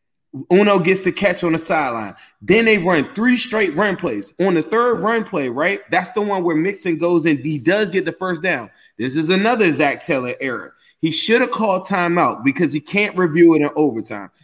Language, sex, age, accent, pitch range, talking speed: English, male, 20-39, American, 155-190 Hz, 210 wpm